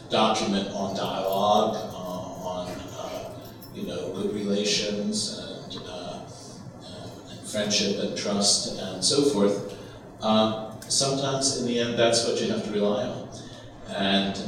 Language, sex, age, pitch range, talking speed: English, male, 40-59, 95-120 Hz, 135 wpm